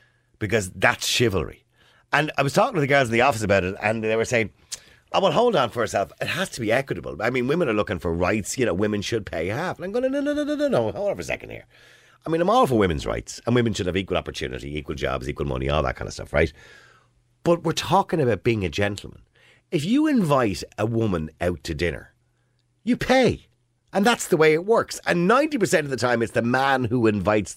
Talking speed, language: 250 wpm, English